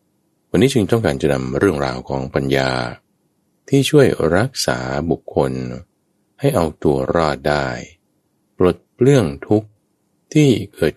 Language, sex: Thai, male